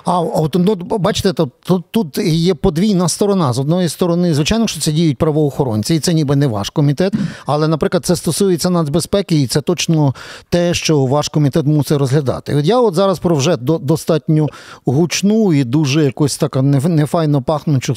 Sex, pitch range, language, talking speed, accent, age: male, 145-180 Hz, Ukrainian, 160 wpm, native, 40-59